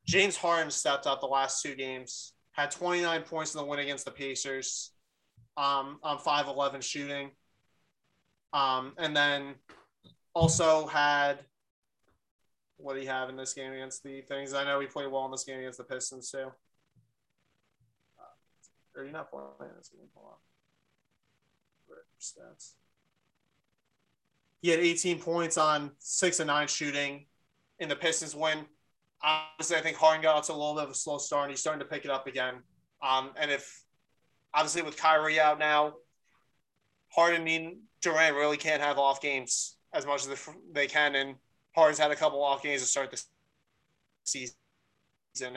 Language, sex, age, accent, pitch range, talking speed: English, male, 20-39, American, 135-155 Hz, 155 wpm